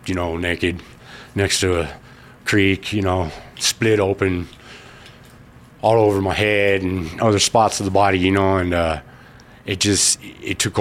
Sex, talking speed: male, 160 wpm